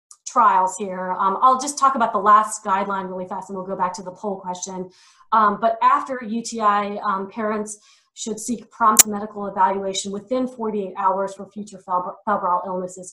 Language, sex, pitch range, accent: English, female, 195-225 Hz, American